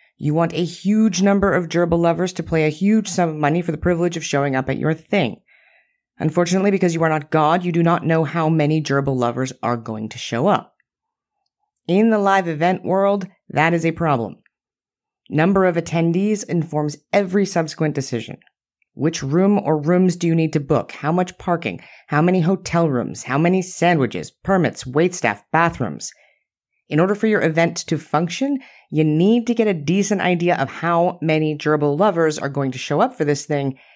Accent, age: American, 30-49